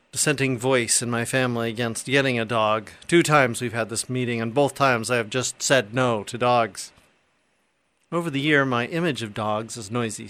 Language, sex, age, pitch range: English, male, 40-59, 120-145 Hz